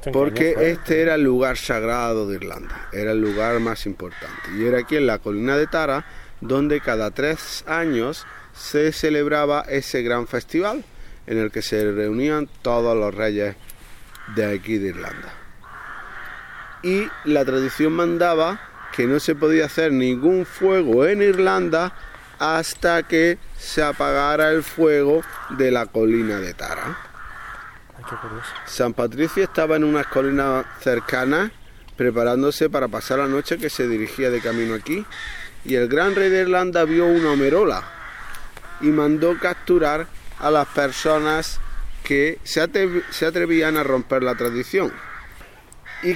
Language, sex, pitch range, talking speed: Spanish, male, 120-170 Hz, 140 wpm